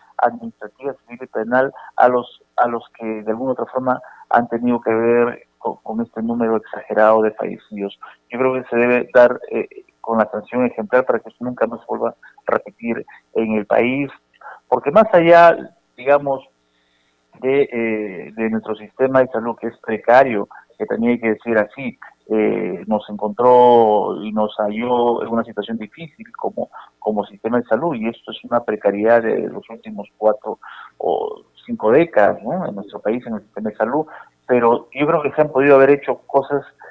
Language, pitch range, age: Spanish, 110-140 Hz, 40-59